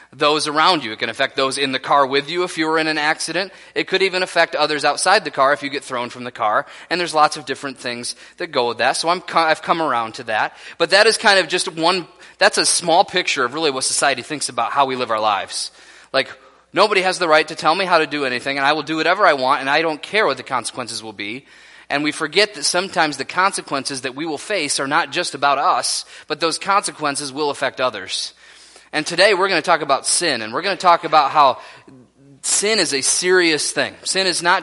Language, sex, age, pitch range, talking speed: English, male, 20-39, 135-170 Hz, 250 wpm